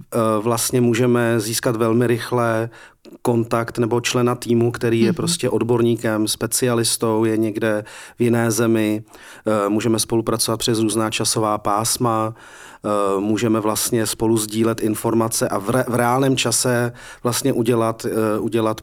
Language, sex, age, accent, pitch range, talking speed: Czech, male, 40-59, native, 110-125 Hz, 120 wpm